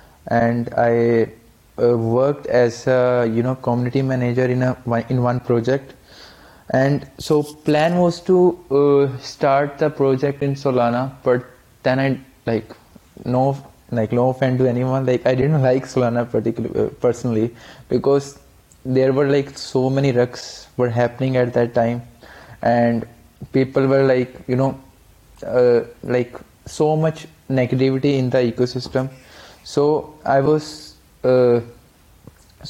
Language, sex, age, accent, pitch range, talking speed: English, male, 20-39, Indian, 120-135 Hz, 130 wpm